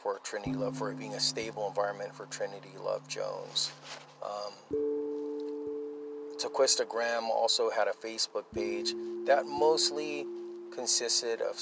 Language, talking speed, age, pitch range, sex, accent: English, 125 wpm, 30-49, 100-135 Hz, male, American